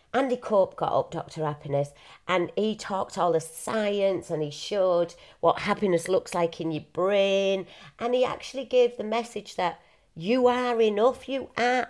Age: 40-59